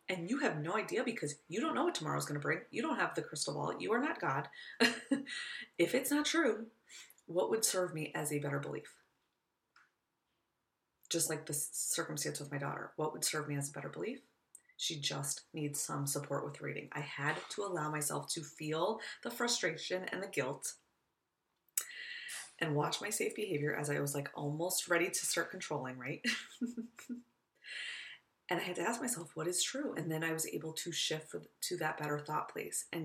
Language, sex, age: English, female, 20-39